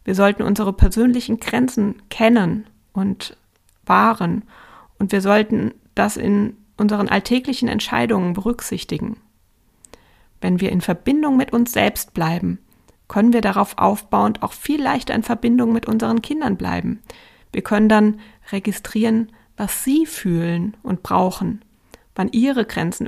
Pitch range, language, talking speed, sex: 175-225 Hz, German, 130 wpm, female